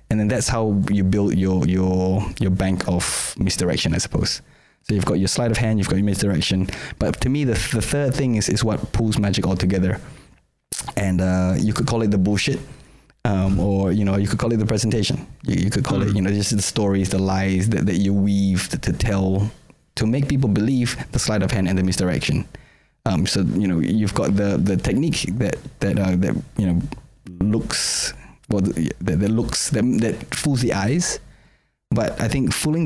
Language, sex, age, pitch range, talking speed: English, male, 20-39, 95-110 Hz, 215 wpm